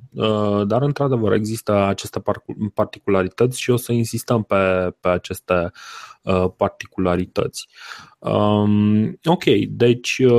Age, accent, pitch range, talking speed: 30-49, native, 95-120 Hz, 85 wpm